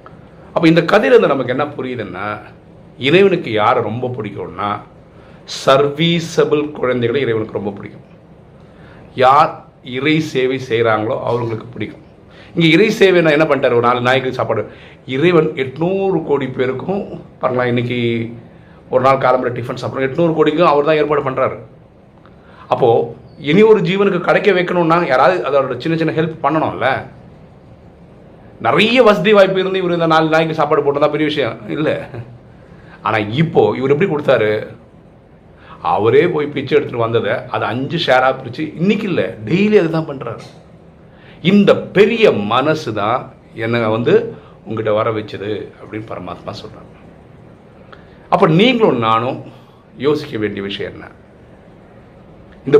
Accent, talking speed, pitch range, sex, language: native, 100 wpm, 125-175 Hz, male, Tamil